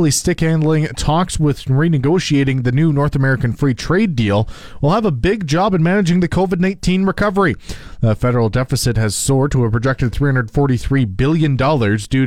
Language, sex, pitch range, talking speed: English, male, 120-155 Hz, 155 wpm